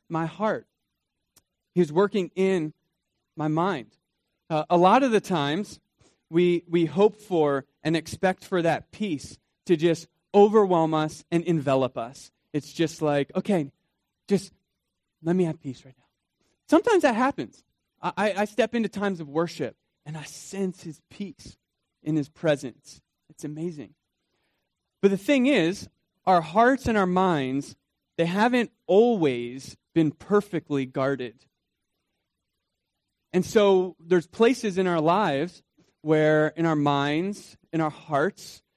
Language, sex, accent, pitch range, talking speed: English, male, American, 145-185 Hz, 140 wpm